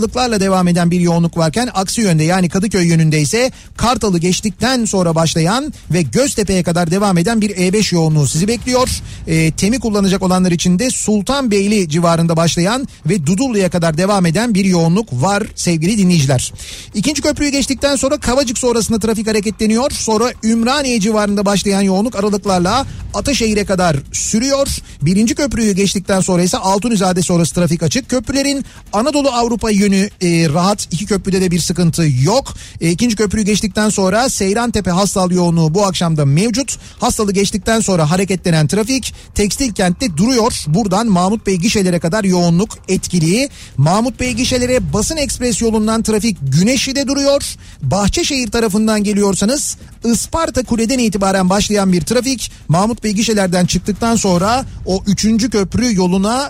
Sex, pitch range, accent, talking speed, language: male, 180-230 Hz, native, 140 wpm, Turkish